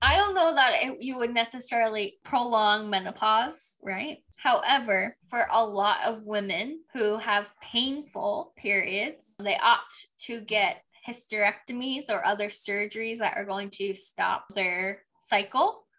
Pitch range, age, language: 200-235 Hz, 10-29, English